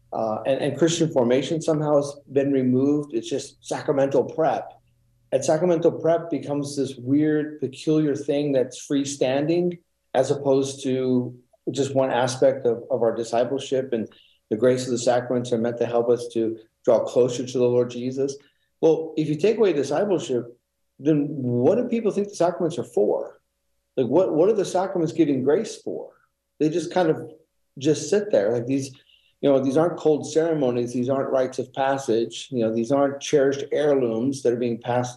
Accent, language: American, English